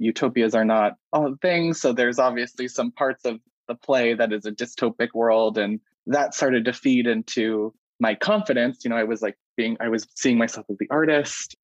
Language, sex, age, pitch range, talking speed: English, male, 20-39, 115-130 Hz, 200 wpm